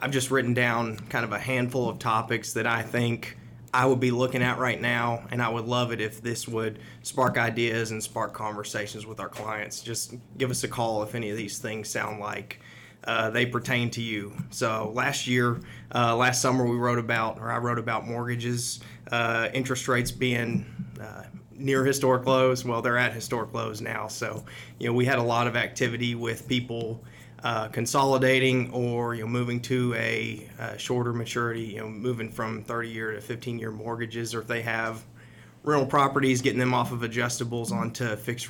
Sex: male